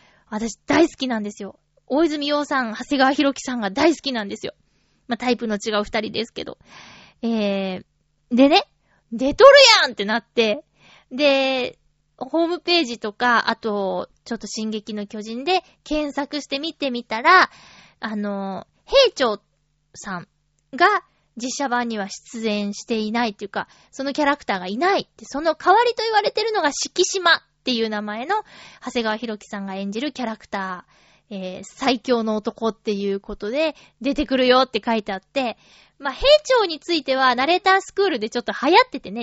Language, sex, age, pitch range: Japanese, female, 20-39, 210-300 Hz